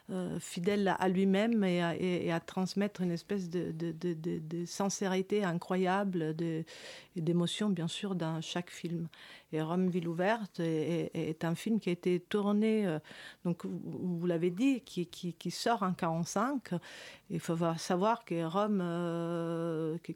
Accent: French